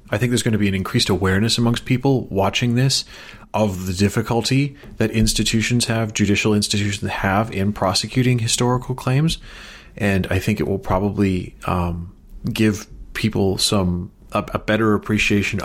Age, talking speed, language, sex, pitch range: 30-49, 155 wpm, English, male, 95-115 Hz